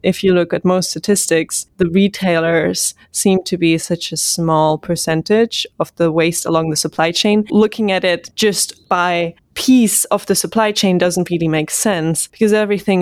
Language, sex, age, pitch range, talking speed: English, female, 20-39, 165-190 Hz, 175 wpm